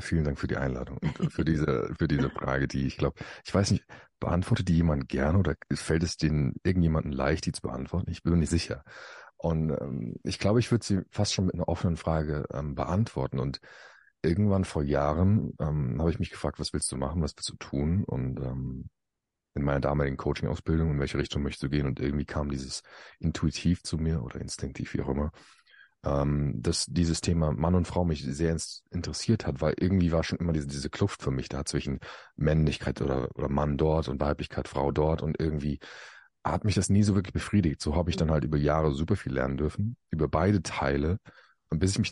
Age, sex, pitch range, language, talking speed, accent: 40-59, male, 70-85 Hz, German, 210 wpm, German